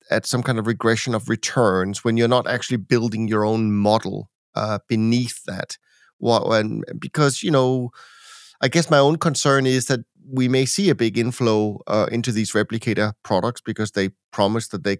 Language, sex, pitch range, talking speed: English, male, 110-130 Hz, 185 wpm